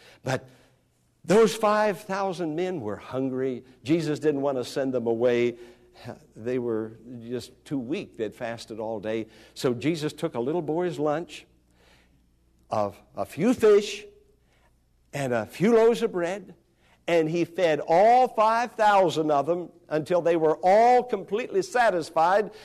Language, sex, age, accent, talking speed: English, male, 60-79, American, 140 wpm